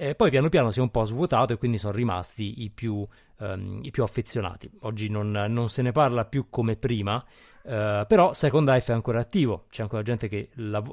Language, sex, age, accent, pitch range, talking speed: Italian, male, 30-49, native, 105-125 Hz, 220 wpm